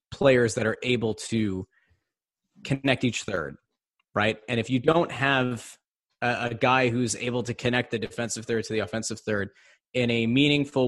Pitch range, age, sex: 115-140 Hz, 20-39, male